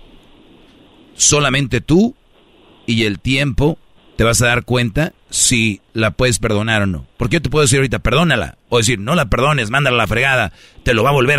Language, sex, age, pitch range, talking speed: Spanish, male, 40-59, 110-140 Hz, 190 wpm